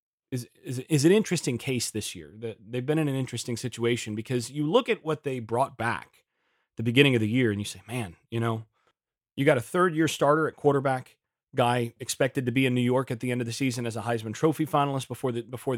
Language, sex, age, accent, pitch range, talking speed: English, male, 30-49, American, 120-145 Hz, 230 wpm